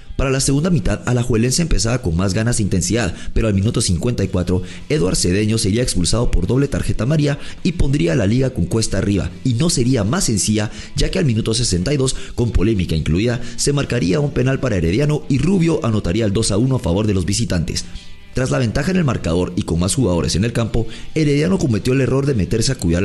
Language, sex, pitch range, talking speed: English, male, 95-130 Hz, 215 wpm